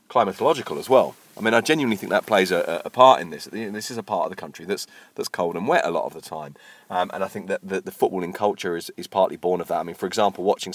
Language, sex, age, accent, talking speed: English, male, 40-59, British, 290 wpm